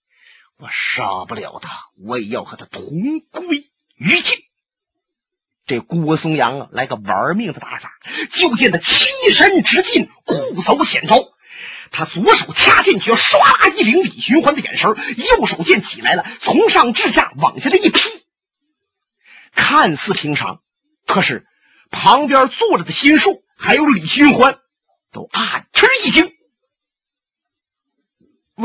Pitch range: 210-350 Hz